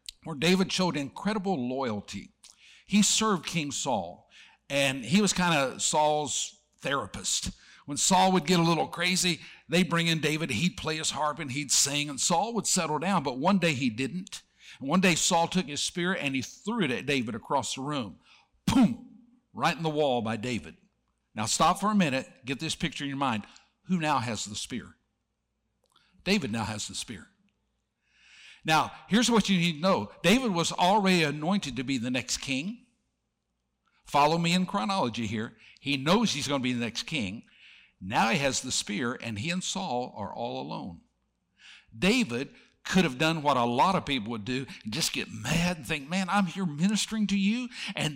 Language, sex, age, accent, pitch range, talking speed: English, male, 60-79, American, 140-195 Hz, 190 wpm